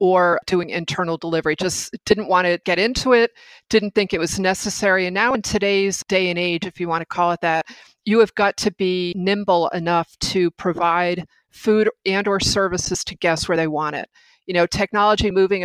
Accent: American